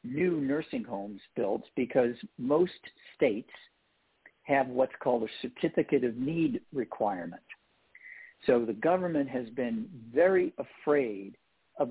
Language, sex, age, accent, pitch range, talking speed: English, male, 60-79, American, 120-165 Hz, 115 wpm